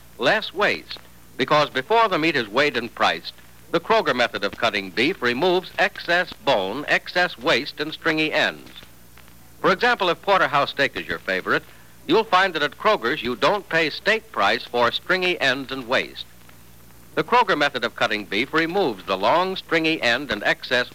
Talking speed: 170 wpm